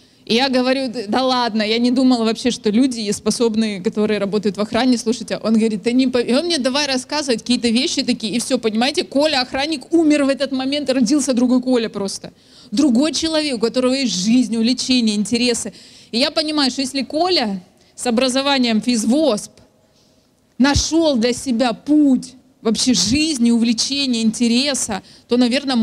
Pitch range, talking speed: 220-260 Hz, 160 wpm